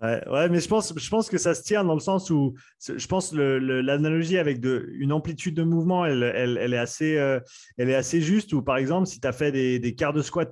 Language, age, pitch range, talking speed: French, 30-49, 130-165 Hz, 215 wpm